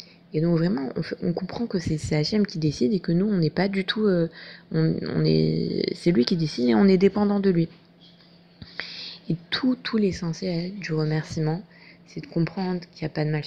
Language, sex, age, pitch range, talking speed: French, female, 20-39, 155-195 Hz, 225 wpm